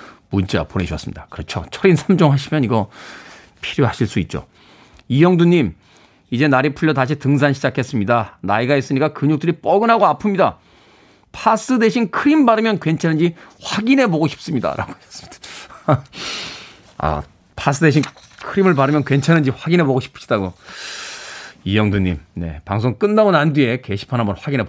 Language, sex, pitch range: Korean, male, 125-205 Hz